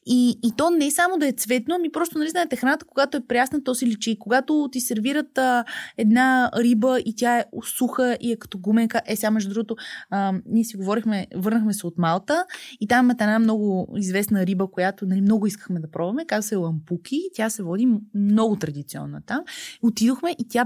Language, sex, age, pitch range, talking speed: Bulgarian, female, 20-39, 205-260 Hz, 205 wpm